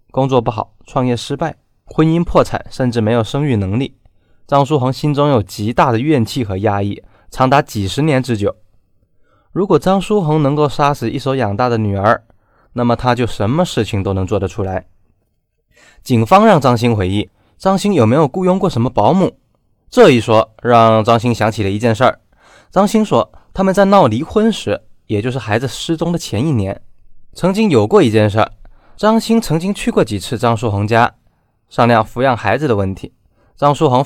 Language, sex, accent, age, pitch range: Chinese, male, native, 20-39, 105-150 Hz